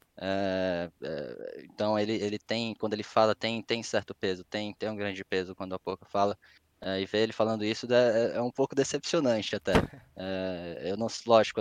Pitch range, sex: 95-110 Hz, male